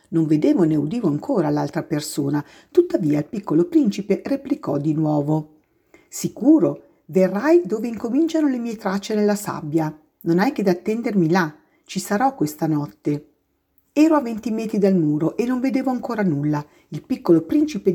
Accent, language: native, Italian